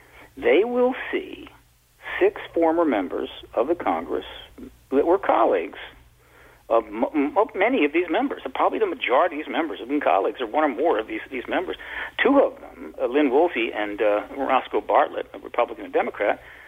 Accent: American